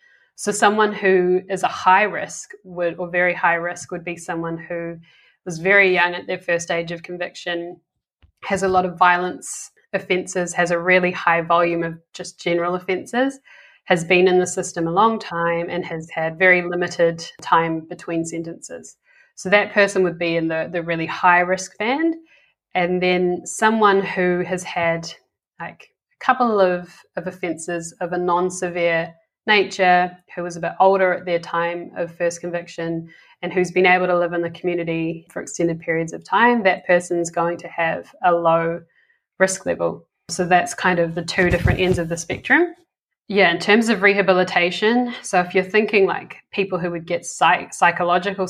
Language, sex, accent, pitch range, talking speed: English, female, Australian, 170-190 Hz, 180 wpm